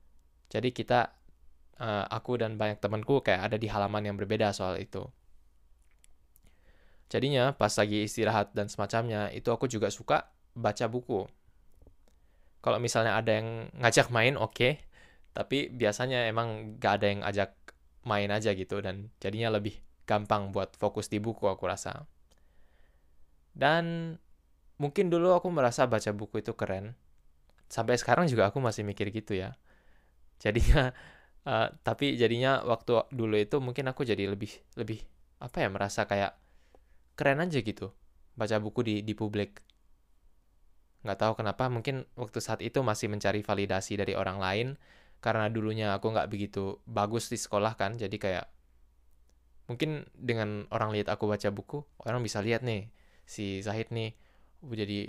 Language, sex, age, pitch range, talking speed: Indonesian, male, 10-29, 95-115 Hz, 145 wpm